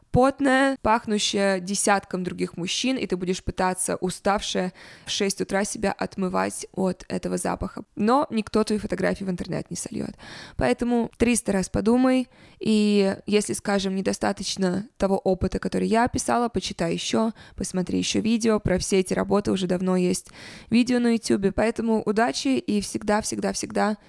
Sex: female